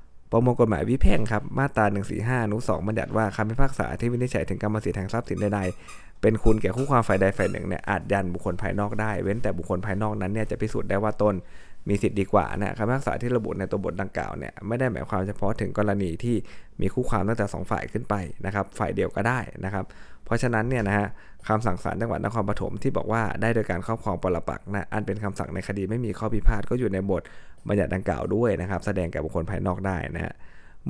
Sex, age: male, 20-39